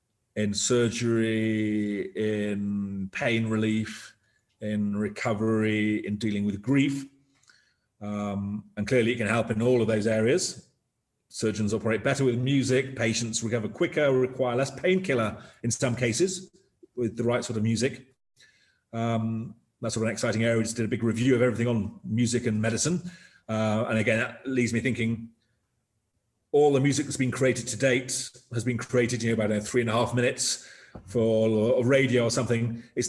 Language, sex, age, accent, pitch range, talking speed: English, male, 40-59, British, 110-125 Hz, 170 wpm